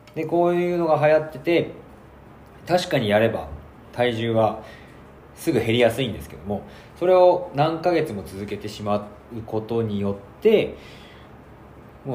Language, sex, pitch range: Japanese, male, 105-155 Hz